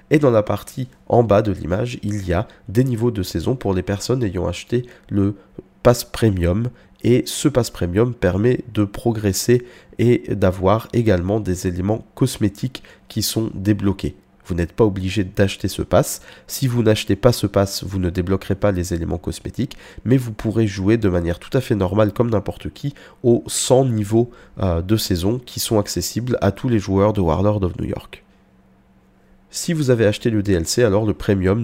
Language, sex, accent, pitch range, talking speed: French, male, French, 95-120 Hz, 185 wpm